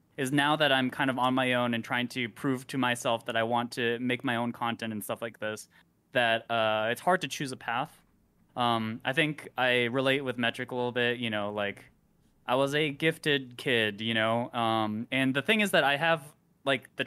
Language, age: English, 20-39